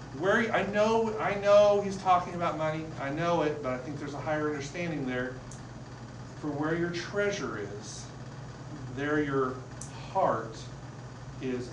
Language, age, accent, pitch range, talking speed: English, 40-59, American, 125-165 Hz, 150 wpm